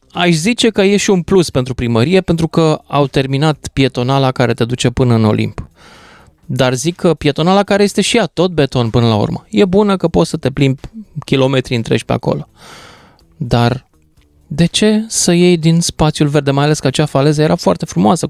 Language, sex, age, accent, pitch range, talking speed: Romanian, male, 20-39, native, 135-185 Hz, 195 wpm